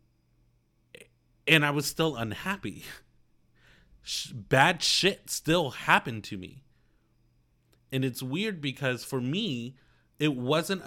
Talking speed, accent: 105 wpm, American